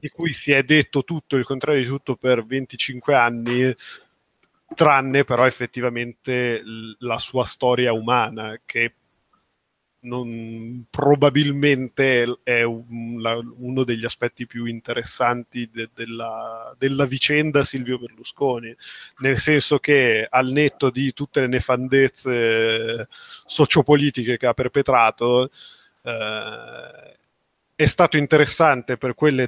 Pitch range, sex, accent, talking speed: 120-140 Hz, male, native, 115 wpm